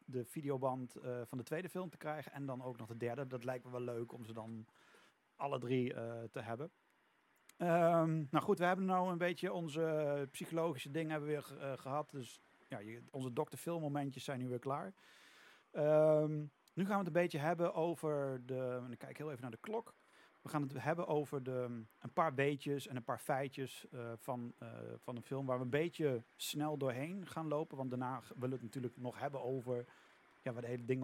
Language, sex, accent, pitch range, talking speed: Dutch, male, Dutch, 125-160 Hz, 215 wpm